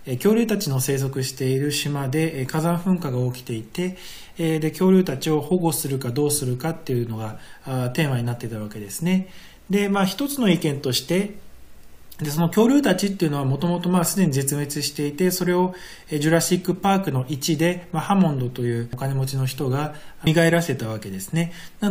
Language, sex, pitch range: Japanese, male, 125-170 Hz